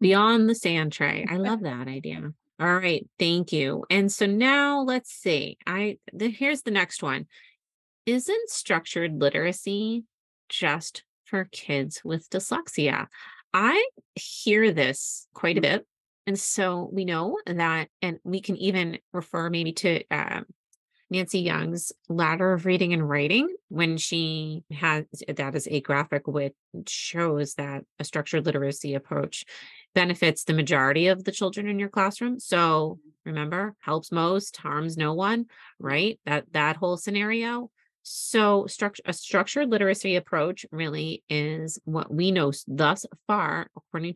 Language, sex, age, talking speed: English, female, 30-49, 145 wpm